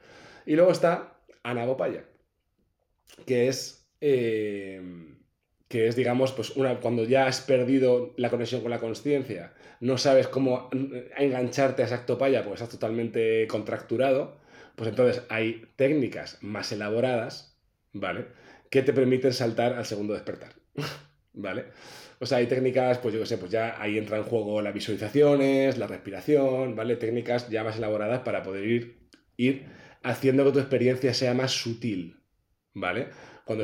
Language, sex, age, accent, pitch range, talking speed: Spanish, male, 20-39, Spanish, 115-135 Hz, 150 wpm